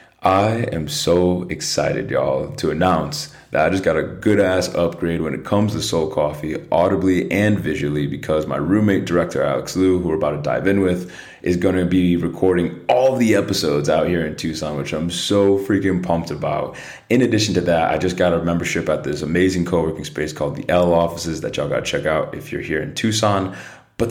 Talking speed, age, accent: 210 wpm, 30-49, American